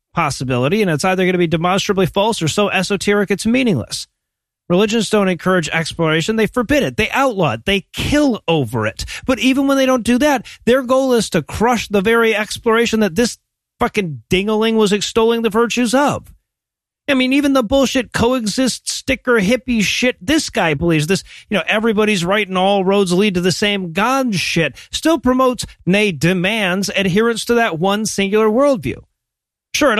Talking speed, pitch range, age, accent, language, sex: 180 wpm, 185-240 Hz, 40-59, American, English, male